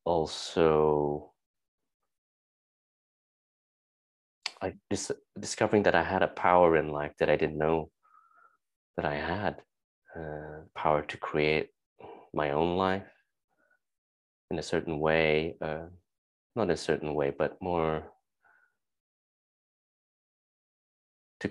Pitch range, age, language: 75-85 Hz, 30-49, English